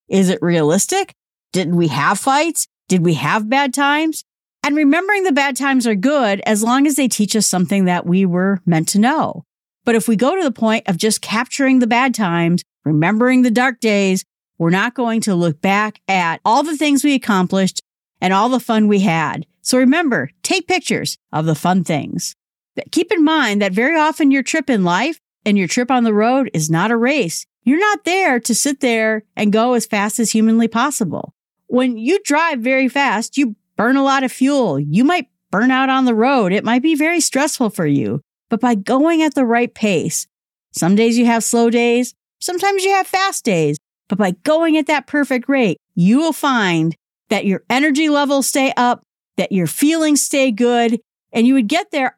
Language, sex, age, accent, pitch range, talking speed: English, female, 40-59, American, 195-280 Hz, 205 wpm